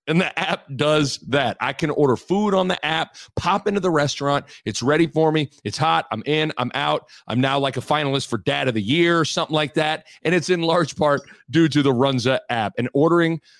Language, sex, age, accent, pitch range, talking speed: English, male, 40-59, American, 130-165 Hz, 230 wpm